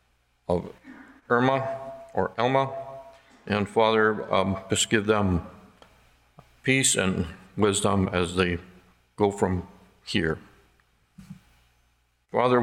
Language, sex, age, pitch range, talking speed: English, male, 60-79, 90-110 Hz, 85 wpm